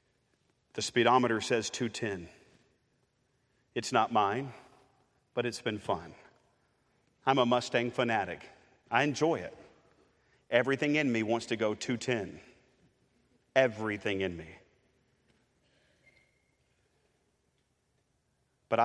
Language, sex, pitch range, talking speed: English, male, 115-140 Hz, 90 wpm